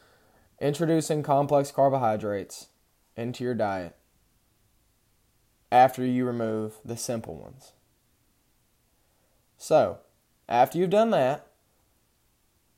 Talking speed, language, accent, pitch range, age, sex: 80 wpm, English, American, 110-140 Hz, 20-39, male